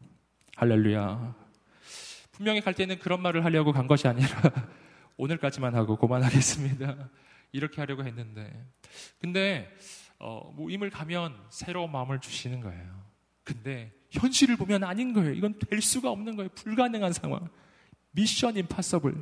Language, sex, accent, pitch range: Korean, male, native, 120-170 Hz